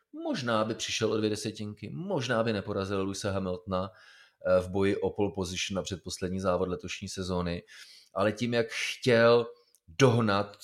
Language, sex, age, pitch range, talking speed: Czech, male, 30-49, 85-100 Hz, 140 wpm